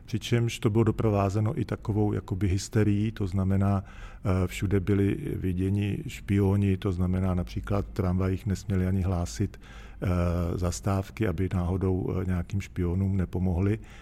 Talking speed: 115 wpm